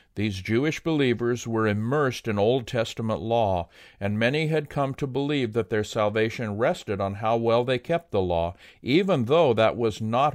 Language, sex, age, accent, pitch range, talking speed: English, male, 50-69, American, 95-125 Hz, 180 wpm